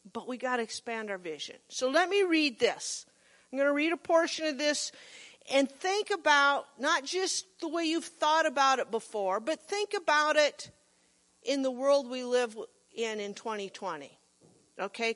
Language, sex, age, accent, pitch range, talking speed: English, female, 50-69, American, 240-305 Hz, 180 wpm